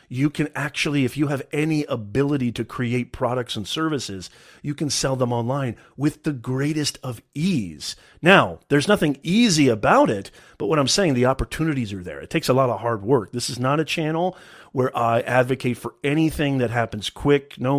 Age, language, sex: 40-59, English, male